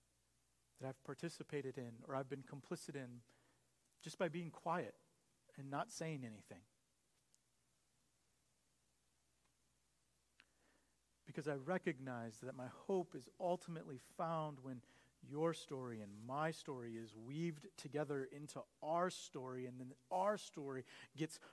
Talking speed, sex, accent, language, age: 120 wpm, male, American, English, 40-59